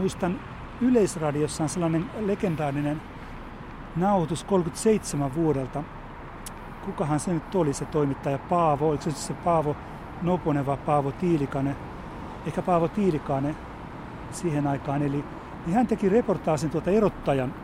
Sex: male